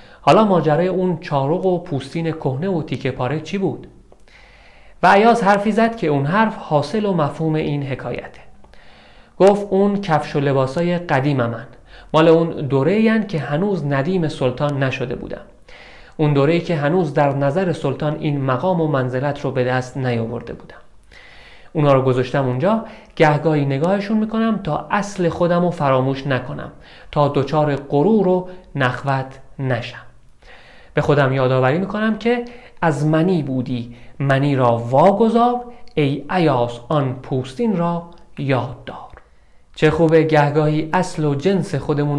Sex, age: male, 40-59